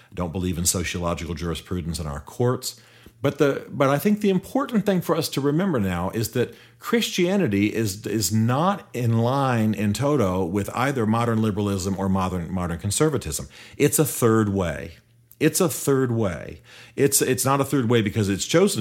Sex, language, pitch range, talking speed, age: male, English, 90-120 Hz, 180 wpm, 40-59